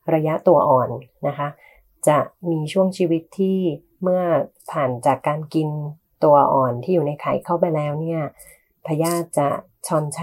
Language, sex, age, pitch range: Thai, female, 30-49, 135-165 Hz